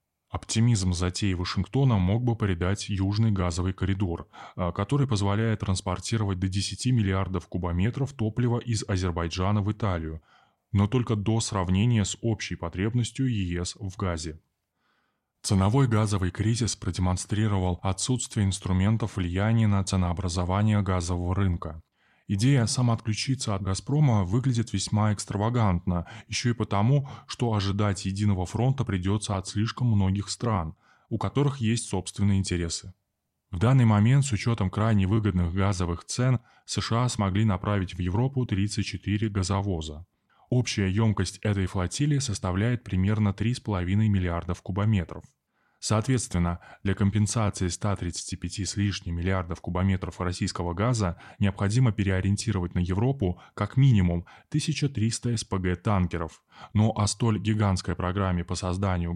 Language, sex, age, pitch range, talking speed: Russian, male, 20-39, 95-110 Hz, 120 wpm